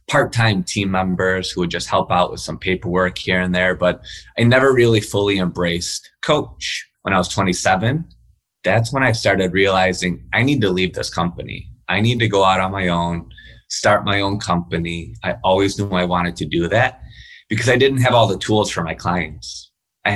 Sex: male